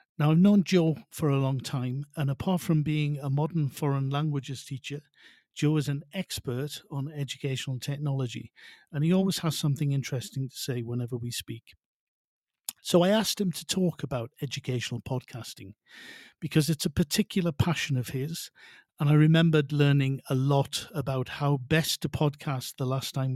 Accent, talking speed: British, 165 wpm